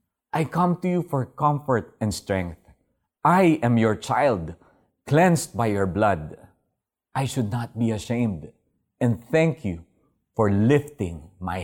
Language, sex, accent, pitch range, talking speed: Filipino, male, native, 95-150 Hz, 140 wpm